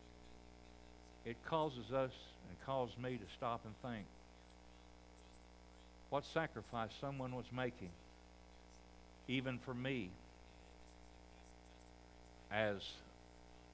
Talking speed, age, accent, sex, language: 85 wpm, 60-79, American, male, English